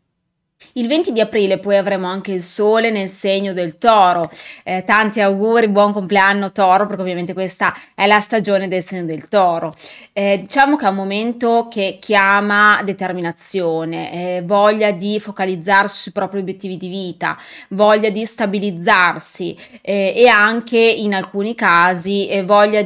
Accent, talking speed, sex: native, 150 wpm, female